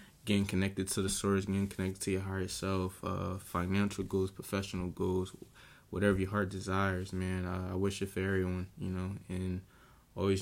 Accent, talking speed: American, 180 wpm